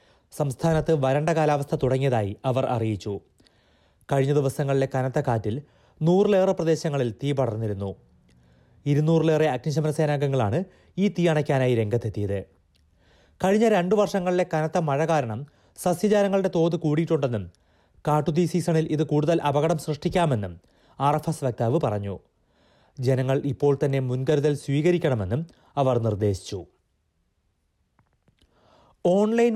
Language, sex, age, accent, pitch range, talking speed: Malayalam, male, 30-49, native, 115-165 Hz, 95 wpm